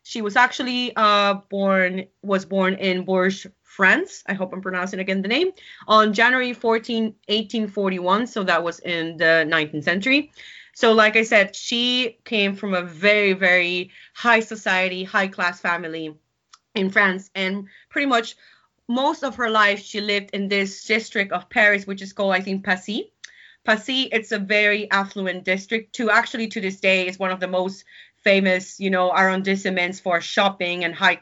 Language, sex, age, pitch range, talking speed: English, female, 30-49, 190-225 Hz, 170 wpm